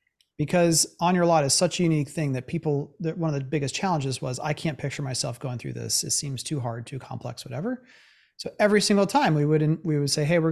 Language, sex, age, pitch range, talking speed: English, male, 30-49, 135-165 Hz, 245 wpm